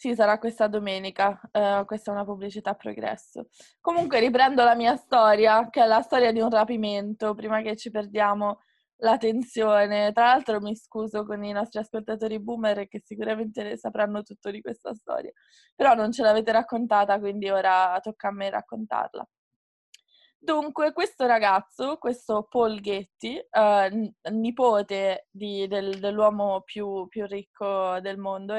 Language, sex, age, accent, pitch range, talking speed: Italian, female, 20-39, native, 200-225 Hz, 140 wpm